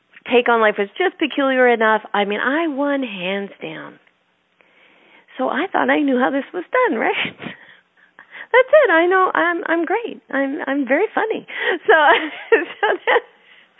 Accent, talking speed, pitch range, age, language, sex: American, 155 wpm, 185-285 Hz, 40-59, English, female